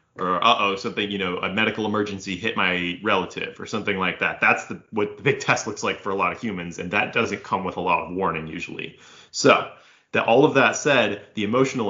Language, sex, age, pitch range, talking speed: English, male, 30-49, 100-130 Hz, 230 wpm